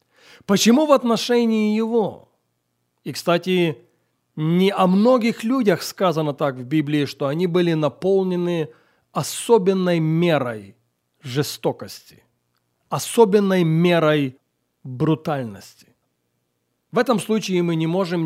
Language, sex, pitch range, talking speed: Russian, male, 140-185 Hz, 100 wpm